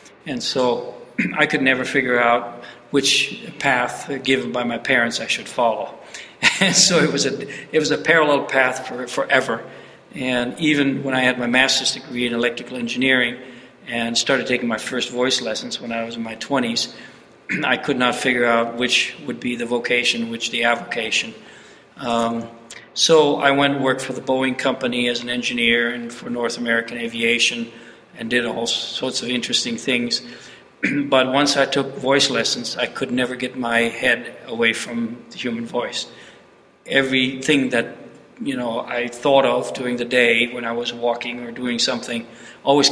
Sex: male